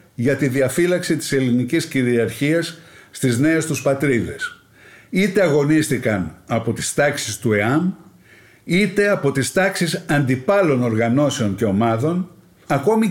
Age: 60-79